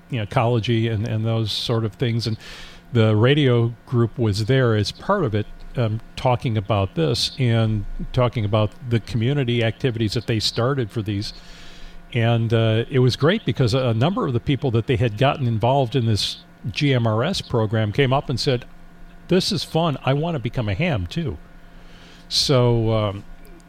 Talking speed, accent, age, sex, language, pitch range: 170 wpm, American, 50-69, male, English, 110-145 Hz